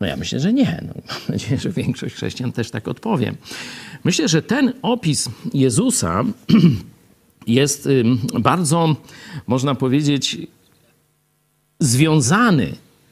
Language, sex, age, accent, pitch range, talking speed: Polish, male, 50-69, native, 140-220 Hz, 105 wpm